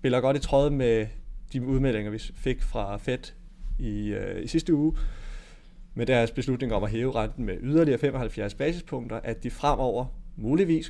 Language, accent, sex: Danish, native, male